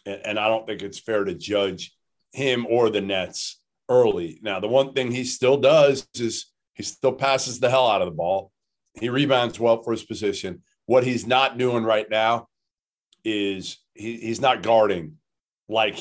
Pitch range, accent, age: 115-155 Hz, American, 40-59